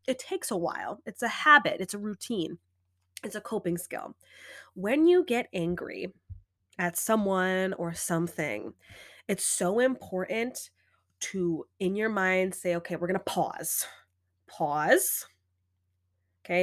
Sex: female